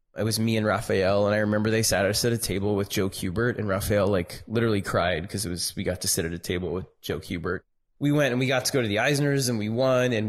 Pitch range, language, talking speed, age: 100-125 Hz, English, 285 wpm, 20-39